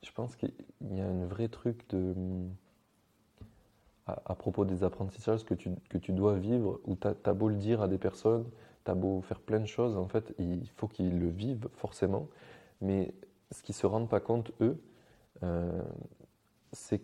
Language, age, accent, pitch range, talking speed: French, 20-39, French, 95-115 Hz, 190 wpm